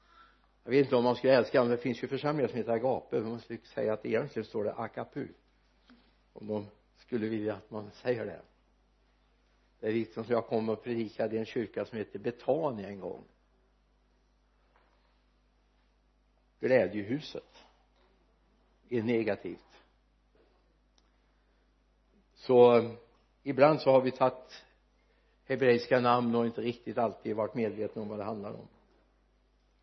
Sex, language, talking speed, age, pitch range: male, Swedish, 145 wpm, 60-79, 120-195 Hz